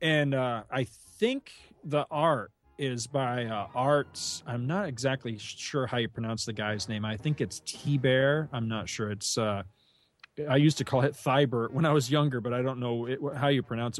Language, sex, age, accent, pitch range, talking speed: English, male, 30-49, American, 110-140 Hz, 200 wpm